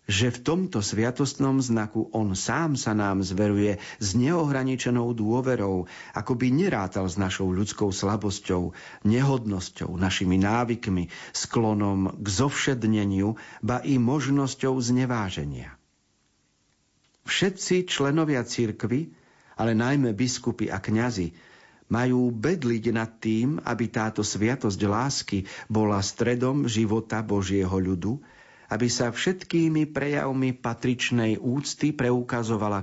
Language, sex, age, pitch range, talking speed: Slovak, male, 50-69, 100-130 Hz, 105 wpm